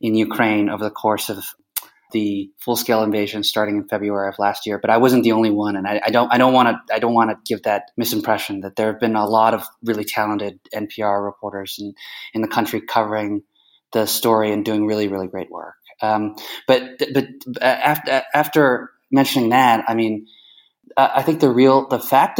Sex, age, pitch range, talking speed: male, 20-39, 105-115 Hz, 210 wpm